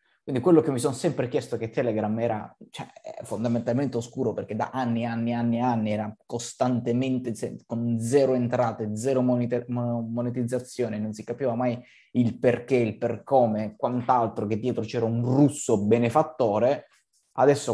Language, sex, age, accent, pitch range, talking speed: Italian, male, 20-39, native, 110-130 Hz, 145 wpm